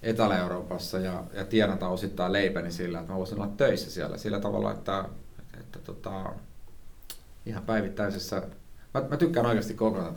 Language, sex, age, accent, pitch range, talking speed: Finnish, male, 30-49, native, 90-110 Hz, 150 wpm